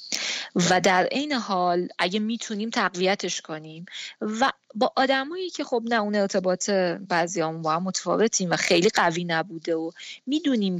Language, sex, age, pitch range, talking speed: Persian, female, 20-39, 180-230 Hz, 140 wpm